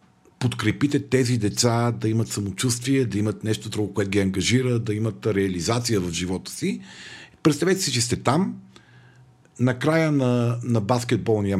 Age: 50-69